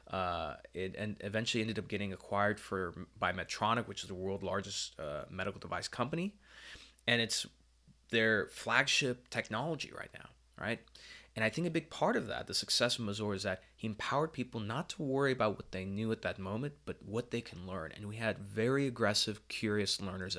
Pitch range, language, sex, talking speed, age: 95-115 Hz, English, male, 195 wpm, 20-39